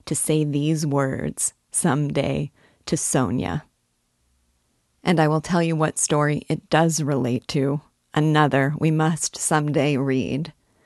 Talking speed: 135 wpm